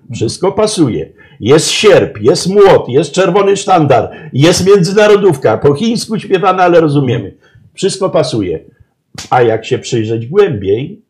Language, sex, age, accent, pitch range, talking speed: Polish, male, 50-69, native, 125-200 Hz, 125 wpm